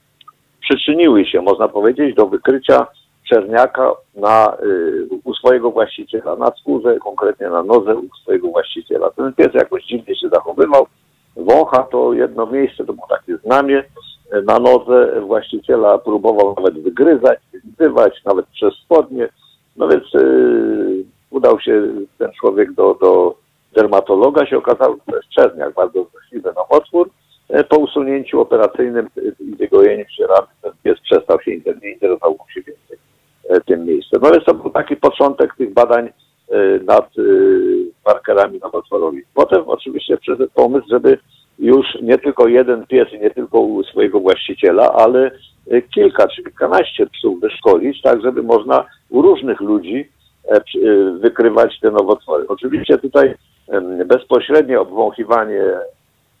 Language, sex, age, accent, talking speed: Polish, male, 50-69, native, 130 wpm